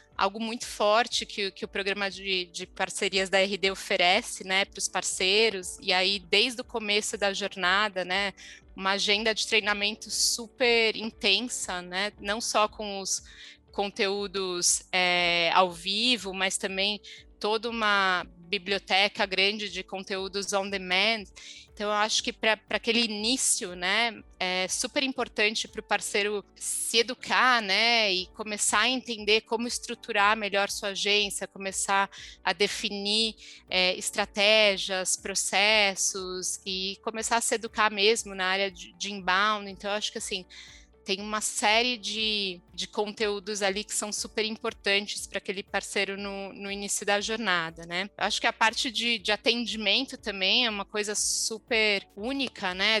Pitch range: 195-220 Hz